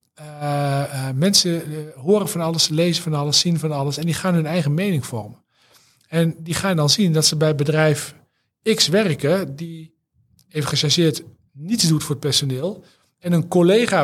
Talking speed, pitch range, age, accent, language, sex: 180 wpm, 150-190 Hz, 50-69, Dutch, Dutch, male